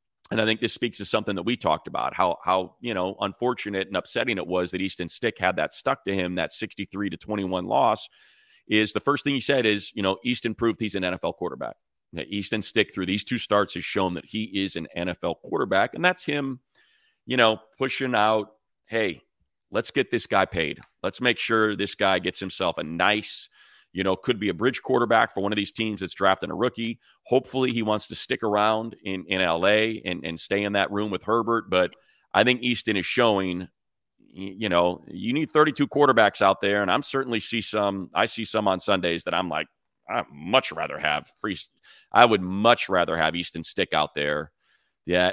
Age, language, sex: 40-59, English, male